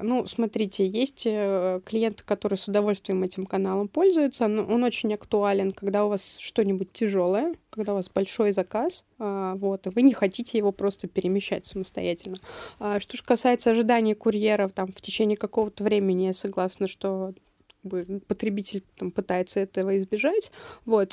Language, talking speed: Russian, 135 wpm